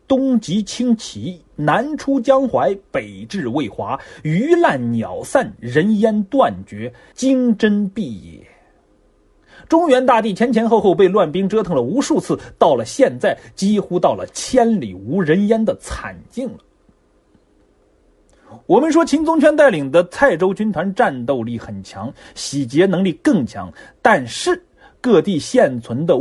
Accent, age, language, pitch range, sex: native, 30-49, Chinese, 165-265 Hz, male